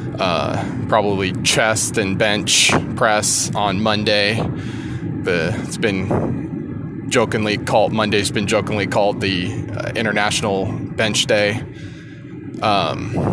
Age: 20-39